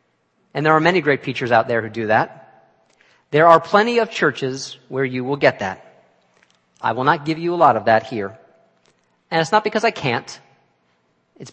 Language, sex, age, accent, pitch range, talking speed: English, male, 40-59, American, 115-160 Hz, 200 wpm